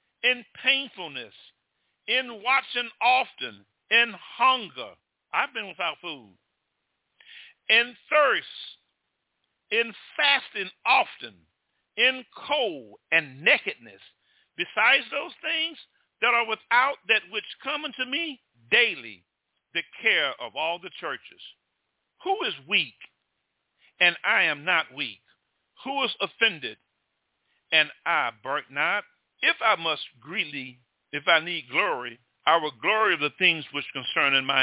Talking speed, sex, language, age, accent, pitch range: 125 wpm, male, English, 50-69, American, 160-270 Hz